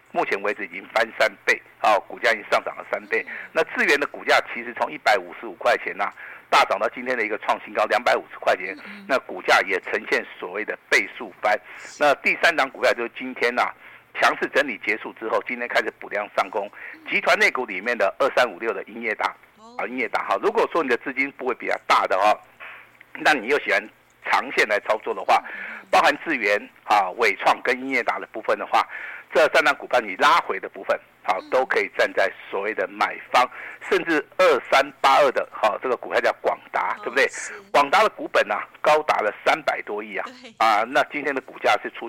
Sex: male